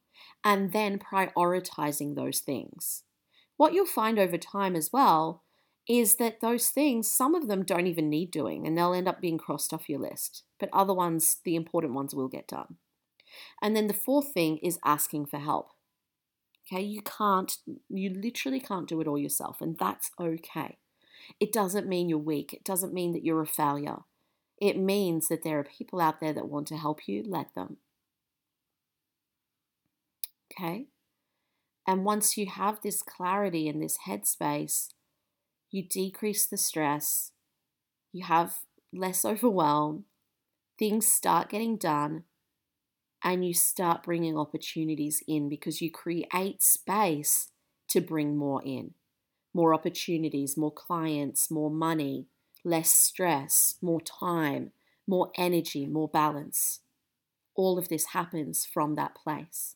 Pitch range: 155-200 Hz